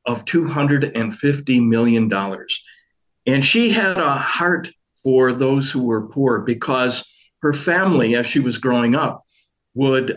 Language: English